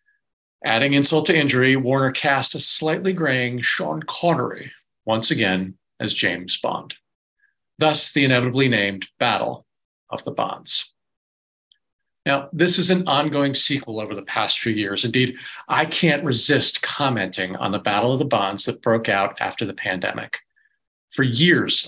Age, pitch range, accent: 40-59, 110-145 Hz, American